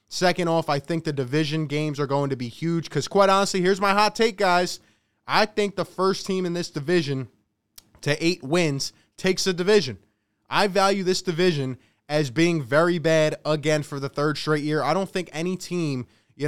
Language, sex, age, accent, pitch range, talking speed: English, male, 20-39, American, 140-175 Hz, 195 wpm